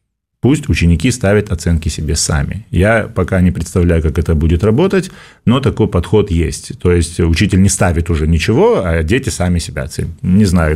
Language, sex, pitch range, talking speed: Russian, male, 90-110 Hz, 180 wpm